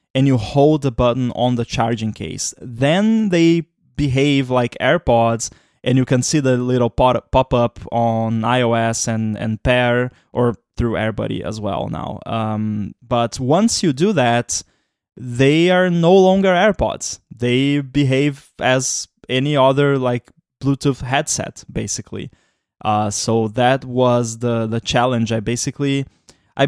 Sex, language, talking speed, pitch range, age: male, English, 140 wpm, 115-145 Hz, 20-39